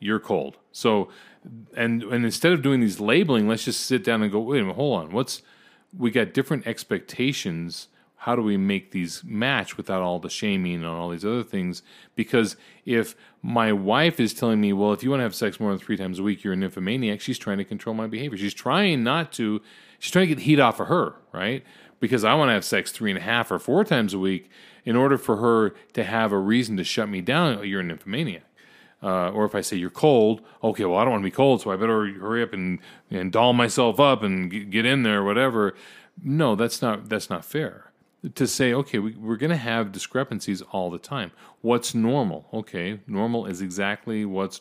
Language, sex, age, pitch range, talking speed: English, male, 30-49, 95-125 Hz, 230 wpm